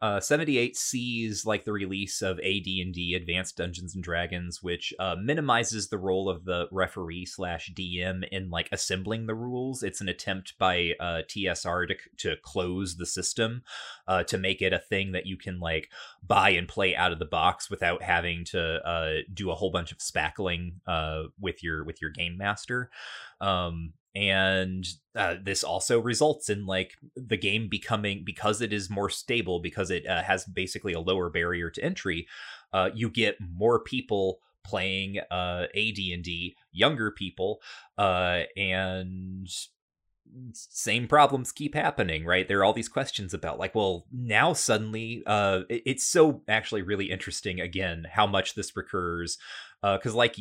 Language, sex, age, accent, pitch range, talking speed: English, male, 30-49, American, 90-105 Hz, 165 wpm